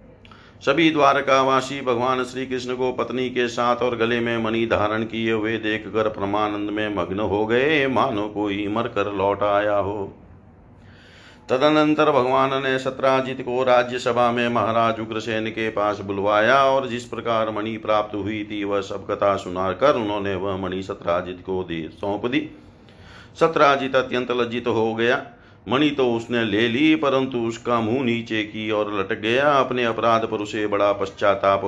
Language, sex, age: Hindi, male, 50-69